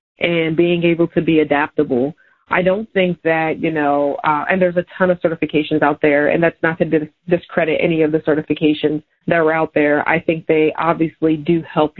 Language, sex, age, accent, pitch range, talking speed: English, female, 30-49, American, 160-175 Hz, 200 wpm